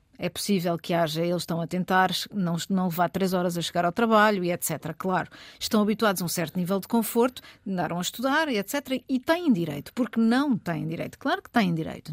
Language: Portuguese